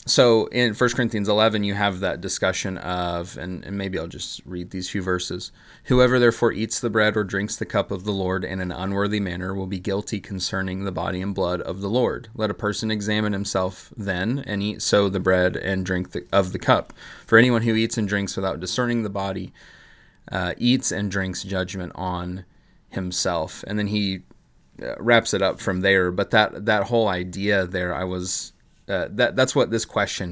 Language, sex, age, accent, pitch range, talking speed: English, male, 30-49, American, 95-105 Hz, 200 wpm